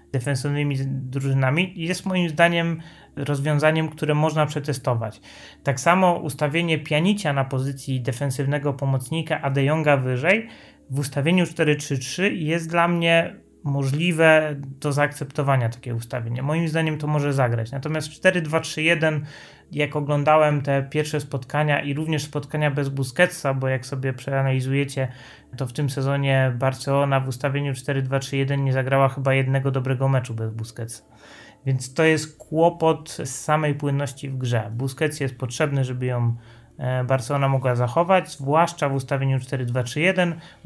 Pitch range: 135-155 Hz